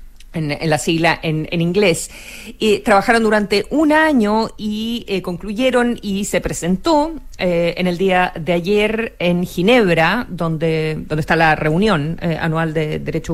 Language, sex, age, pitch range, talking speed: Spanish, female, 40-59, 165-215 Hz, 160 wpm